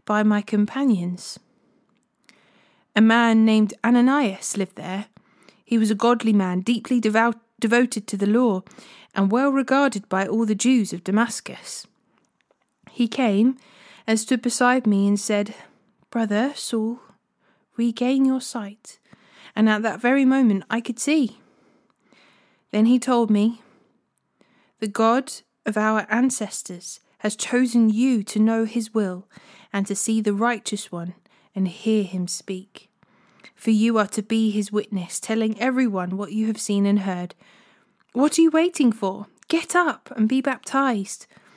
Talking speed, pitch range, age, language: 145 wpm, 205-245 Hz, 30-49, English